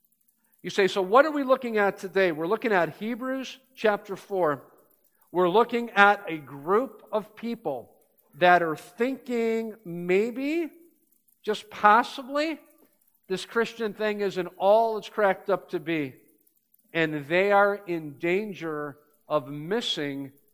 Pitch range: 160-220 Hz